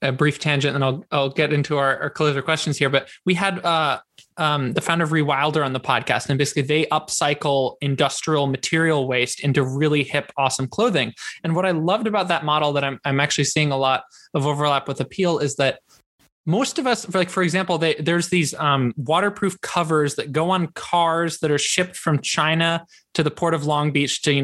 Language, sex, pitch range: English, male, 140-180 Hz